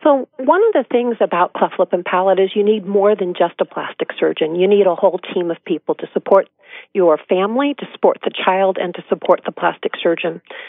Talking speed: 225 wpm